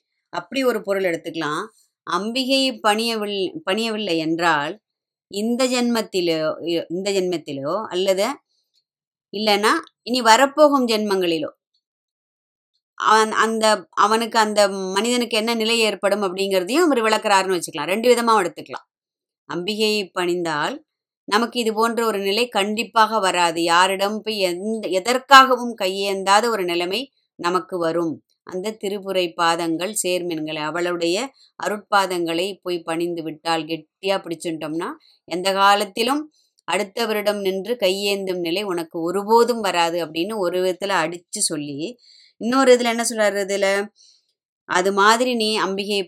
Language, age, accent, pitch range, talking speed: Tamil, 20-39, native, 175-220 Hz, 105 wpm